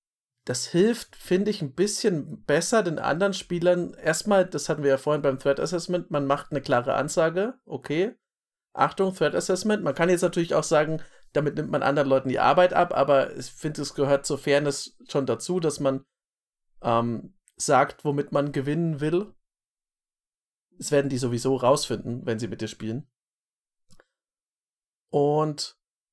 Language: German